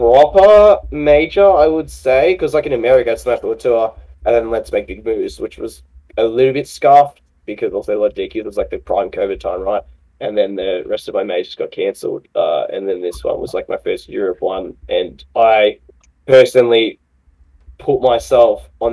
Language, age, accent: English, 10-29, Australian